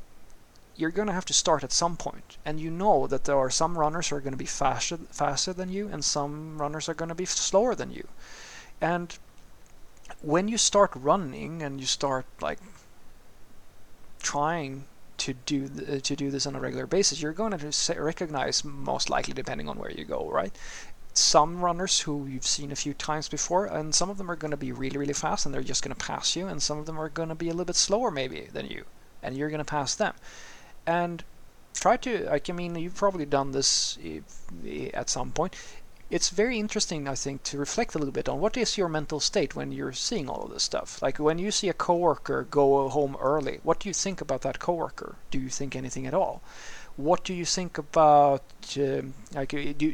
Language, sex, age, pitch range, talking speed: English, male, 30-49, 140-175 Hz, 220 wpm